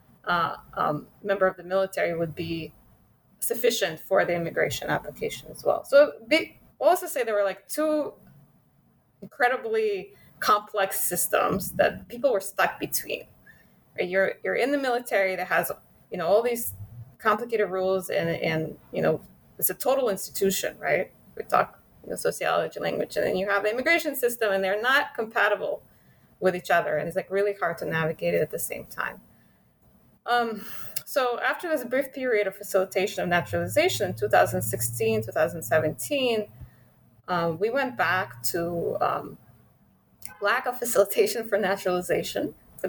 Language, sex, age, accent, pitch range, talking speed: English, female, 20-39, American, 175-240 Hz, 155 wpm